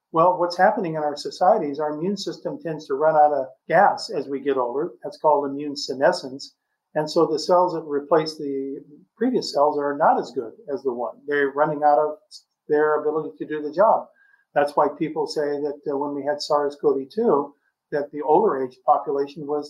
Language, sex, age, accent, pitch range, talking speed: English, male, 50-69, American, 140-175 Hz, 200 wpm